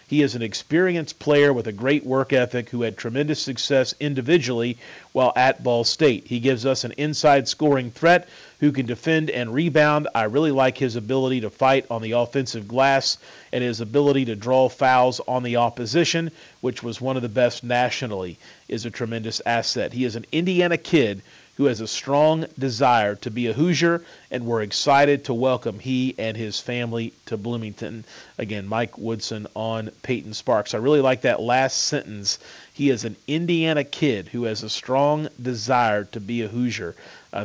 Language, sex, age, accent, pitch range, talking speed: English, male, 40-59, American, 115-145 Hz, 185 wpm